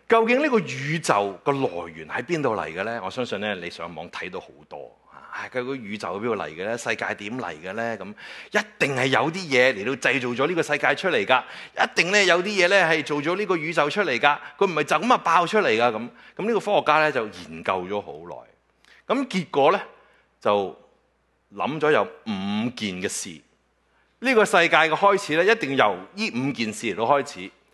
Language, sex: English, male